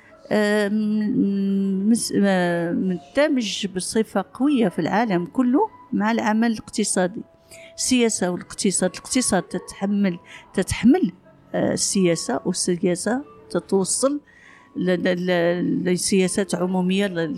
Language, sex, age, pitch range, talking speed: Arabic, female, 50-69, 170-205 Hz, 75 wpm